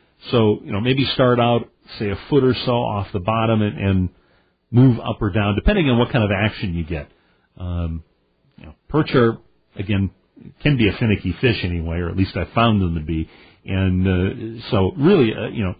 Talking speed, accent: 210 wpm, American